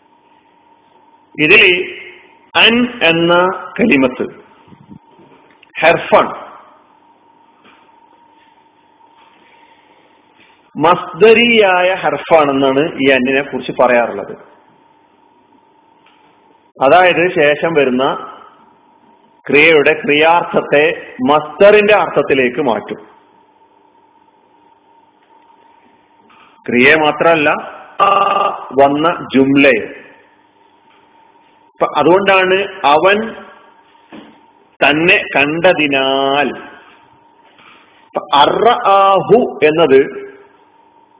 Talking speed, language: 40 wpm, Malayalam